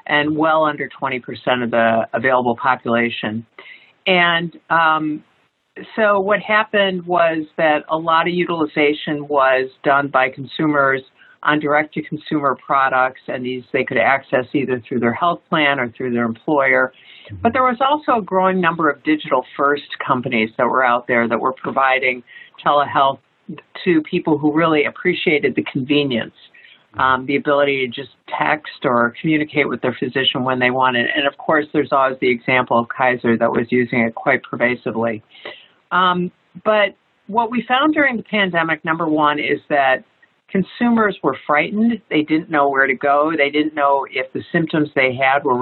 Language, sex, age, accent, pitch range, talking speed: English, female, 50-69, American, 130-165 Hz, 170 wpm